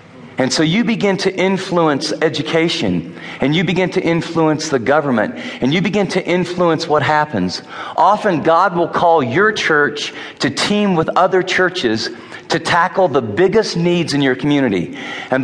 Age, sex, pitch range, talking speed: 40-59, male, 135-165 Hz, 160 wpm